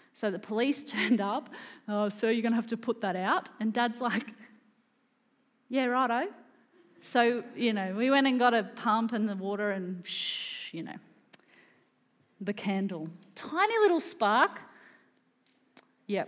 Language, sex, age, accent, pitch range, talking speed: English, female, 30-49, Australian, 190-240 Hz, 155 wpm